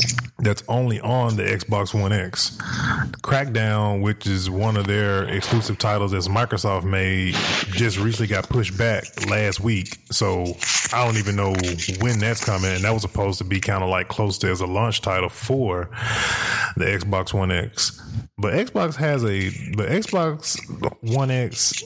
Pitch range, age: 100-120 Hz, 20-39